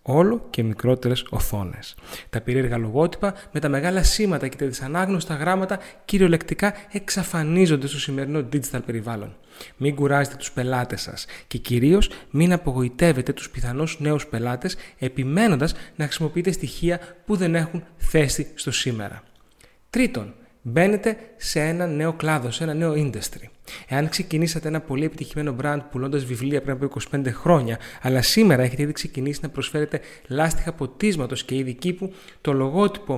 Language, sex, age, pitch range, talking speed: Greek, male, 30-49, 130-175 Hz, 145 wpm